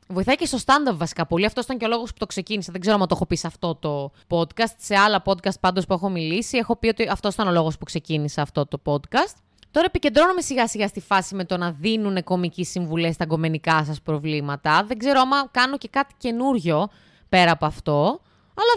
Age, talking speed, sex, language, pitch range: 20-39, 225 wpm, female, Greek, 170-260 Hz